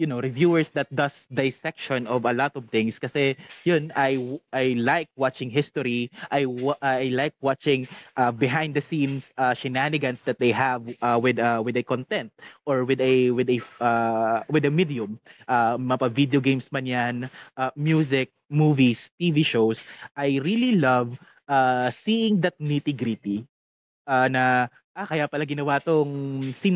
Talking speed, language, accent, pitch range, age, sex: 160 wpm, Filipino, native, 130-160 Hz, 20-39, male